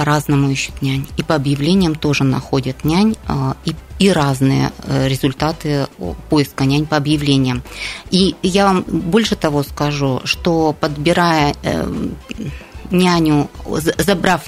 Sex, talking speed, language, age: female, 110 wpm, Russian, 20-39